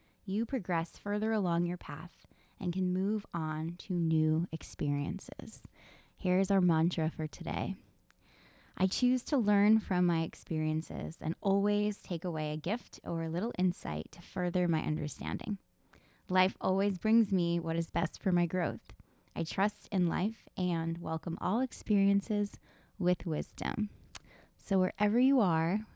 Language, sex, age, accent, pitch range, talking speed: English, female, 20-39, American, 170-205 Hz, 145 wpm